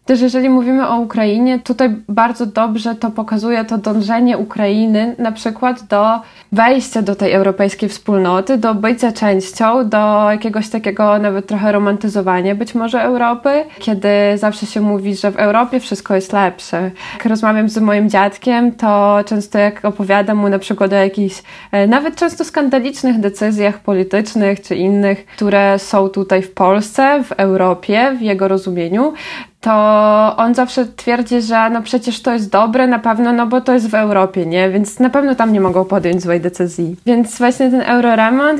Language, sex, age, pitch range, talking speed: Polish, female, 20-39, 200-235 Hz, 165 wpm